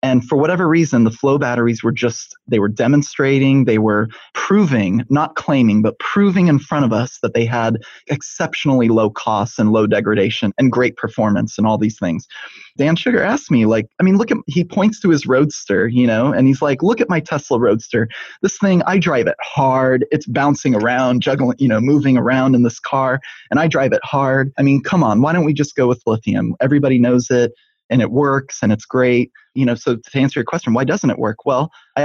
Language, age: English, 20-39